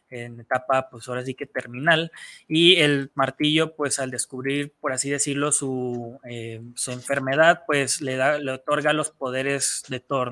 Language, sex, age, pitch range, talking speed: Spanish, male, 20-39, 130-155 Hz, 170 wpm